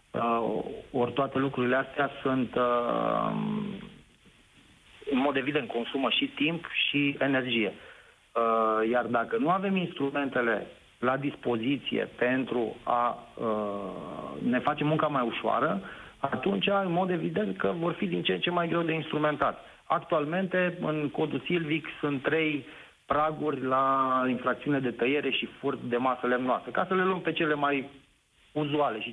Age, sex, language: 40-59, male, Romanian